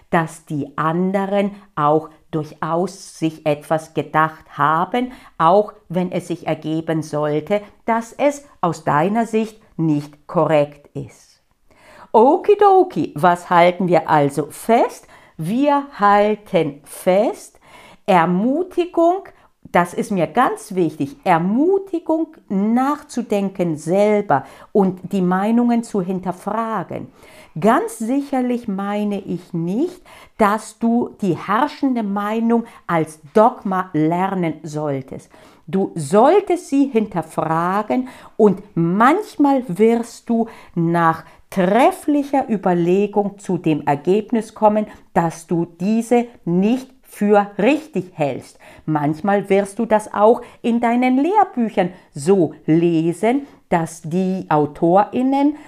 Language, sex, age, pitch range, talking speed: German, female, 50-69, 165-235 Hz, 100 wpm